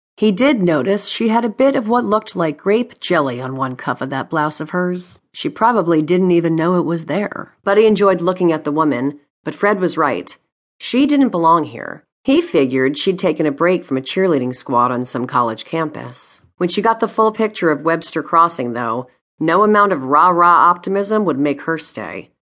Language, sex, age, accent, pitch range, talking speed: English, female, 40-59, American, 140-195 Hz, 200 wpm